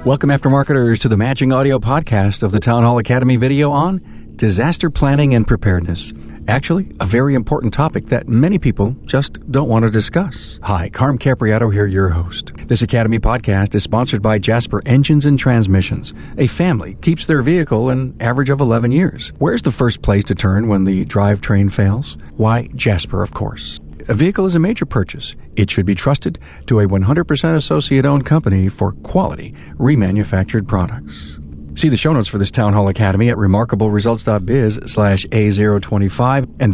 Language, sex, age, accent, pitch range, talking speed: English, male, 50-69, American, 100-130 Hz, 170 wpm